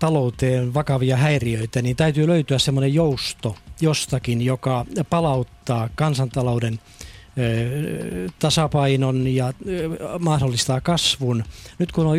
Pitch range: 120-155 Hz